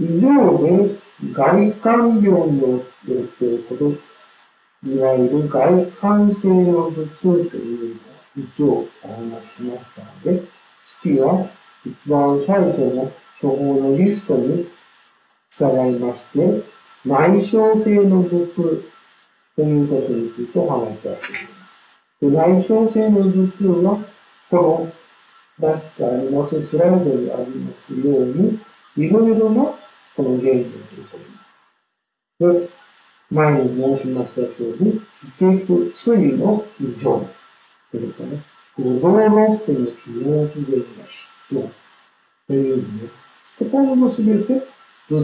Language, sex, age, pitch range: Japanese, male, 50-69, 130-200 Hz